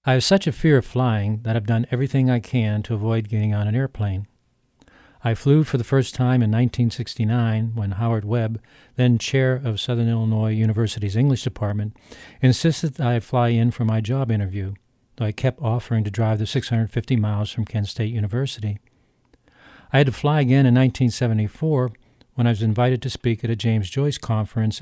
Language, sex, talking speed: English, male, 190 wpm